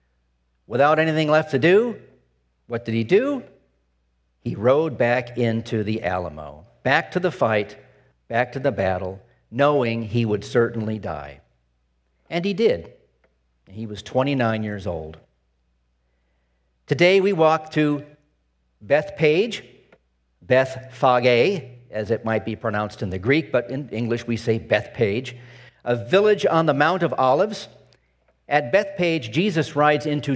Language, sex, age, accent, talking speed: English, male, 50-69, American, 140 wpm